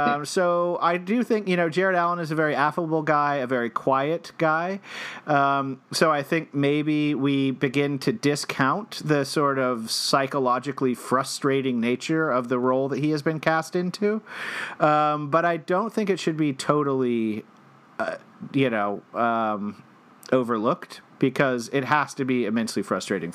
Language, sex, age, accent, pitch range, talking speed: English, male, 40-59, American, 130-170 Hz, 160 wpm